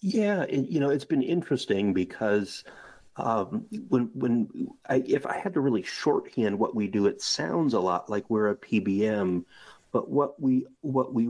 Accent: American